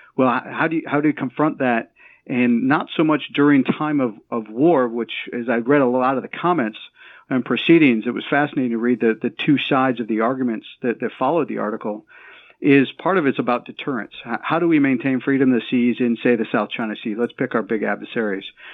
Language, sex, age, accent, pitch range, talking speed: English, male, 50-69, American, 120-140 Hz, 225 wpm